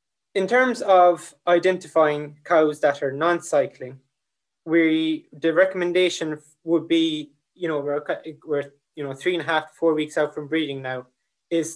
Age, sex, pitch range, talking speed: 20-39, male, 140-170 Hz, 155 wpm